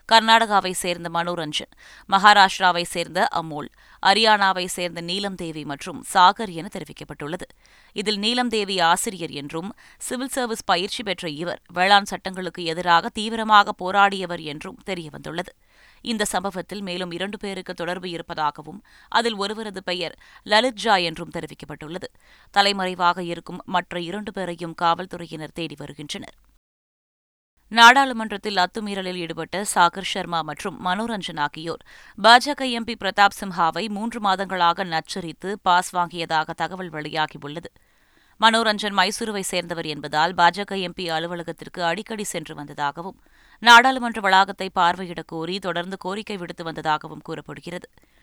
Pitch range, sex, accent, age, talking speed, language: 165-200 Hz, female, native, 20-39, 110 wpm, Tamil